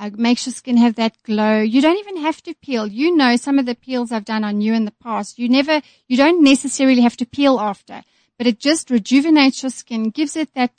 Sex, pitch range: female, 220-265 Hz